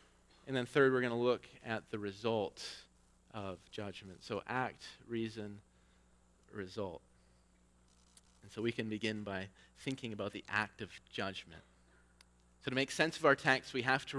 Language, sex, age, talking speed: English, male, 30-49, 160 wpm